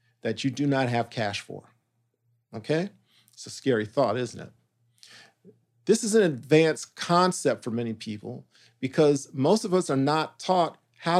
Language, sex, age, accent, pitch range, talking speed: English, male, 50-69, American, 120-160 Hz, 160 wpm